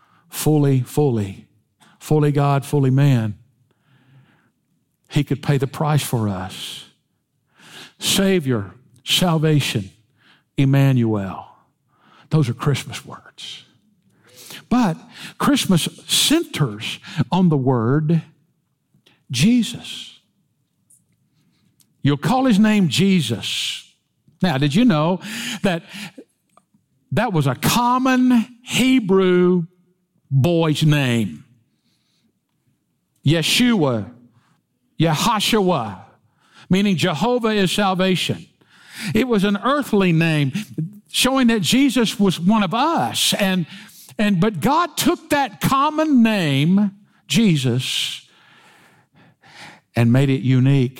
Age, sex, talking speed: 60-79, male, 90 wpm